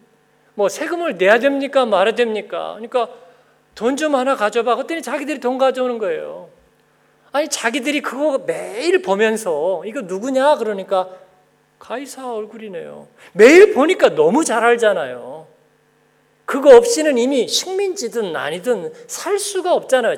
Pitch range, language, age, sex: 180-300 Hz, Korean, 40-59, male